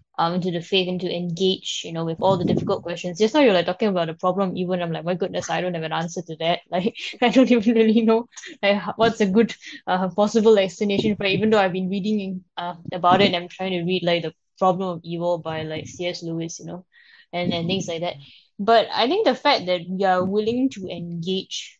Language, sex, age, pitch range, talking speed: English, female, 10-29, 175-205 Hz, 250 wpm